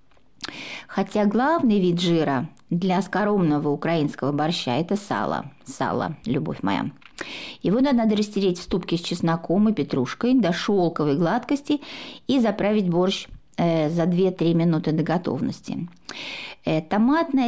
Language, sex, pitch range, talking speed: Russian, female, 165-245 Hz, 115 wpm